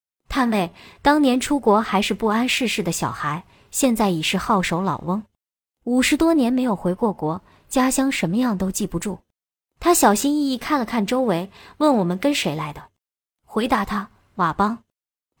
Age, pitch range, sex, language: 20-39, 190-255 Hz, male, Chinese